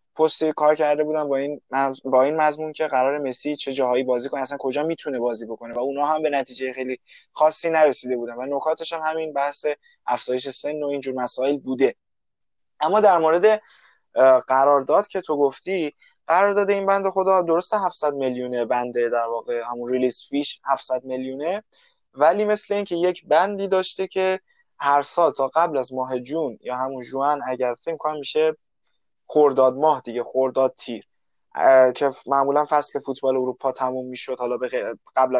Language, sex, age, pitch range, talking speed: Persian, male, 20-39, 130-170 Hz, 170 wpm